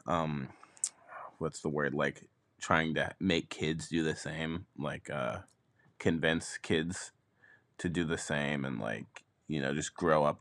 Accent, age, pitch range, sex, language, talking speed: American, 20-39, 75-90 Hz, male, English, 155 wpm